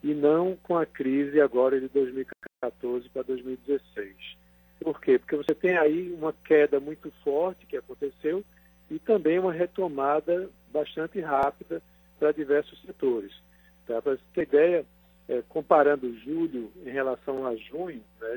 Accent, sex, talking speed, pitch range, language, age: Brazilian, male, 145 wpm, 130-185 Hz, Portuguese, 50-69